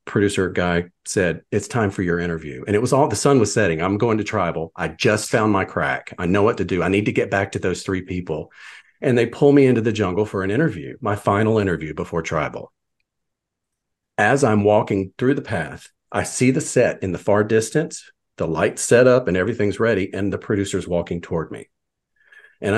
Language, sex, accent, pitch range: English, male, American, 90-125 Hz